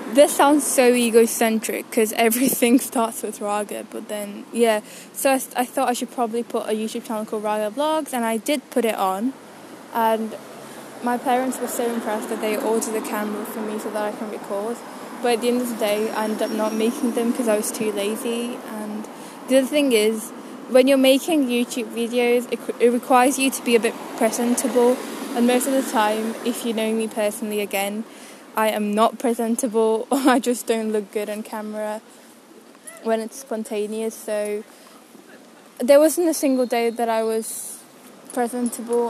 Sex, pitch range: female, 220-260 Hz